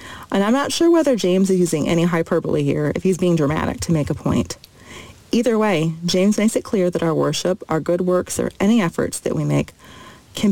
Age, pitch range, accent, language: 40-59, 160-220 Hz, American, English